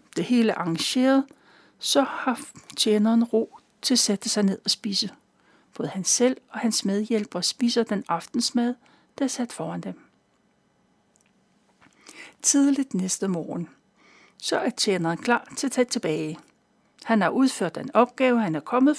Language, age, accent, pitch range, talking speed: Danish, 60-79, native, 190-255 Hz, 150 wpm